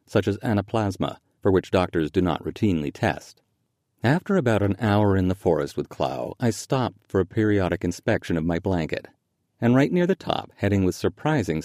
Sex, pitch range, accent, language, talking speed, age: male, 90-125 Hz, American, English, 185 wpm, 40-59